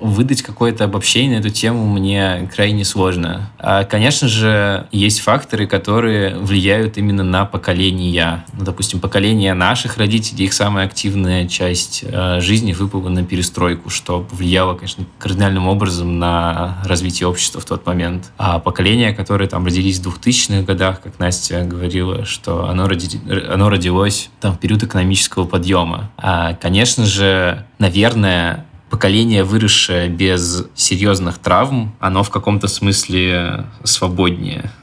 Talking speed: 130 wpm